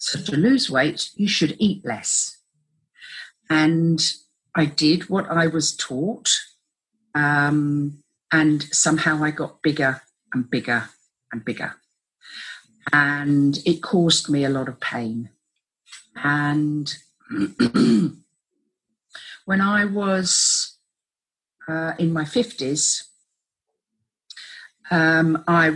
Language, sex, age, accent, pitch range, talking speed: English, female, 50-69, British, 150-205 Hz, 100 wpm